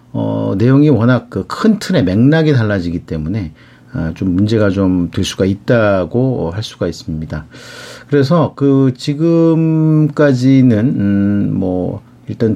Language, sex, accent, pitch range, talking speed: English, male, Korean, 100-140 Hz, 110 wpm